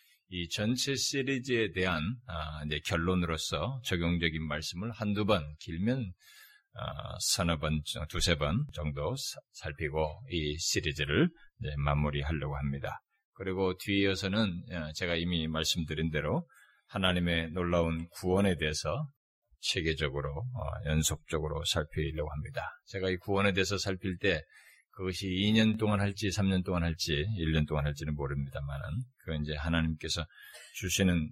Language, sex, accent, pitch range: Korean, male, native, 80-100 Hz